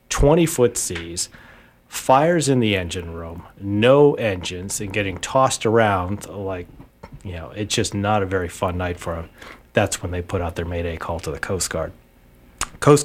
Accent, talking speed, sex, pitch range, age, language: American, 175 wpm, male, 90-115 Hz, 40-59, English